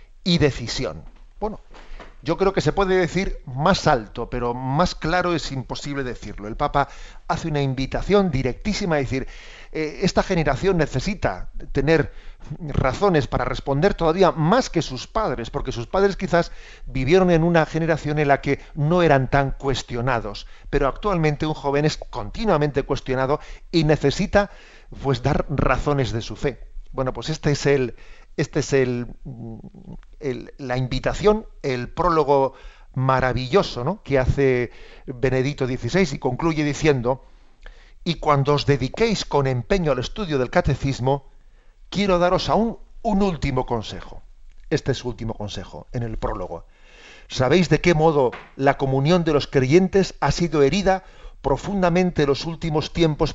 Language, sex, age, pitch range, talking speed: Spanish, male, 40-59, 130-165 Hz, 145 wpm